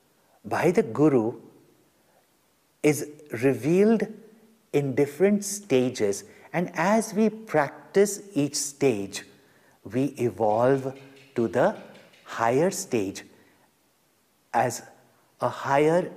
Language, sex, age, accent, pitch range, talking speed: English, male, 50-69, Indian, 120-155 Hz, 85 wpm